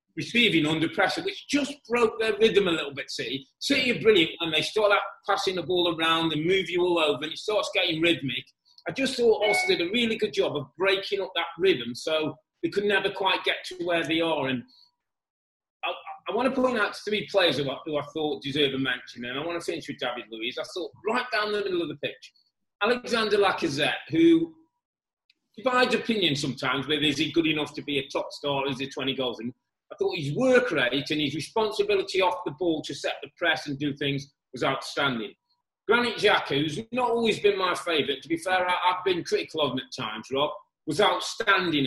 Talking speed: 225 wpm